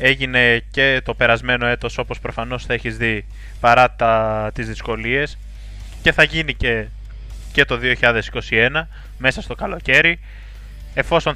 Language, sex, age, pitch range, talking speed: Greek, male, 20-39, 115-130 Hz, 130 wpm